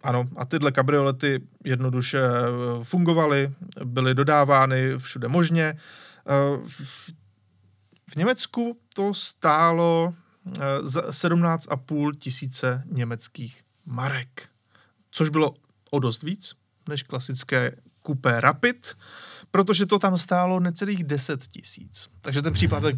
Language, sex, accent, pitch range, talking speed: Czech, male, native, 125-170 Hz, 95 wpm